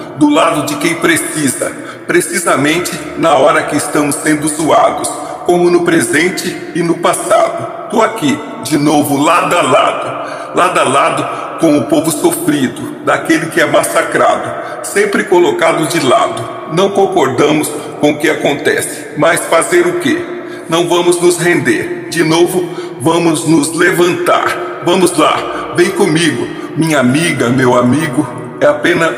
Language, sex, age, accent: Portuguese, male, 60-79, Brazilian